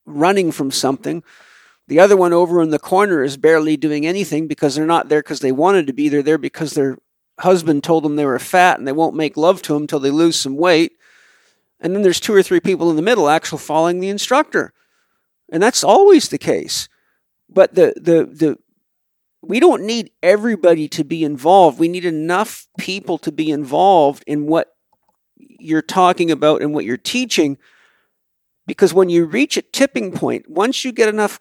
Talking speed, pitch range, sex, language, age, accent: 195 wpm, 155-200 Hz, male, English, 50-69, American